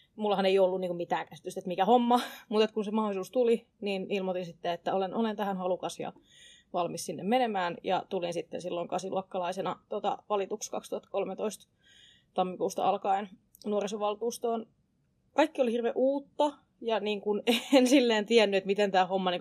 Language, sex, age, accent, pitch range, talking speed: Finnish, female, 20-39, native, 180-215 Hz, 145 wpm